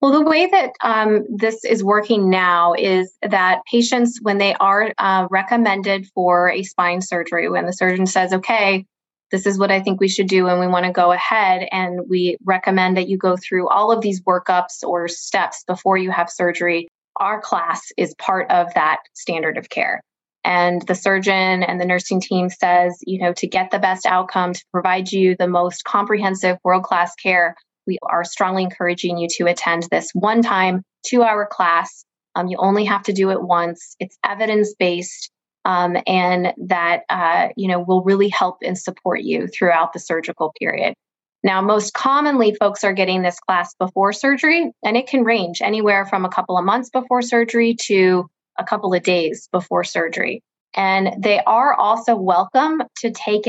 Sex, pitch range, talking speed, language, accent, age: female, 180-210 Hz, 180 wpm, English, American, 20-39